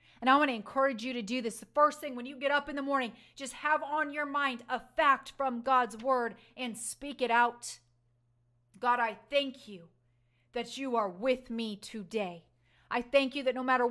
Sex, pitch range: female, 225-275 Hz